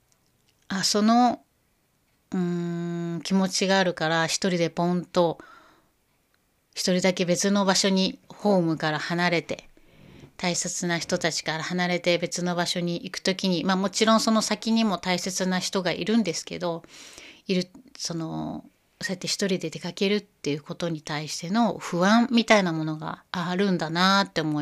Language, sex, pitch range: Japanese, female, 165-195 Hz